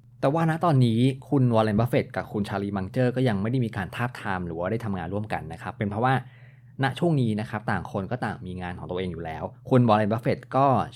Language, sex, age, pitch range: Thai, male, 20-39, 100-130 Hz